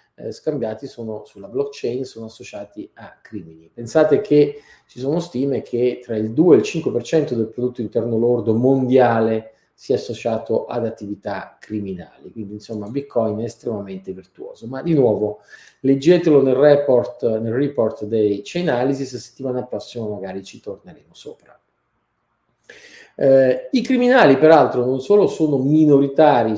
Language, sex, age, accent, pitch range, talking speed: Italian, male, 40-59, native, 115-145 Hz, 140 wpm